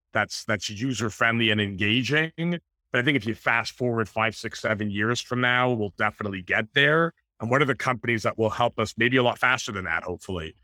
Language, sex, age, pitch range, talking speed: English, male, 30-49, 100-125 Hz, 215 wpm